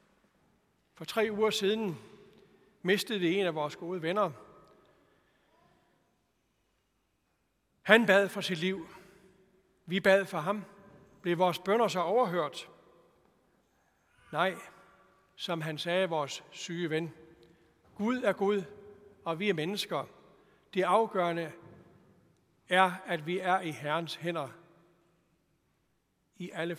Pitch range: 170-205 Hz